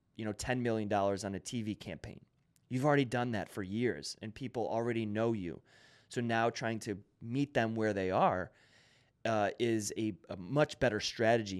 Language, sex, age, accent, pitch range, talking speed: English, male, 30-49, American, 110-135 Hz, 180 wpm